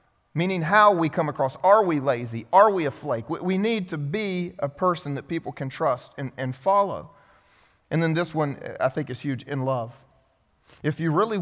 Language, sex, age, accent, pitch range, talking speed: English, male, 30-49, American, 125-160 Hz, 200 wpm